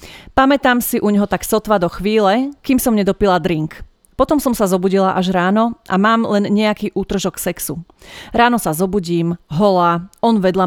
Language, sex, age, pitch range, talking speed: Slovak, female, 30-49, 180-225 Hz, 170 wpm